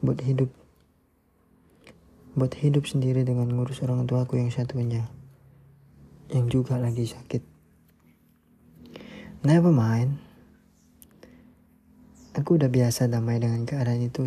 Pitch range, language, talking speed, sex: 120-135 Hz, Indonesian, 105 wpm, male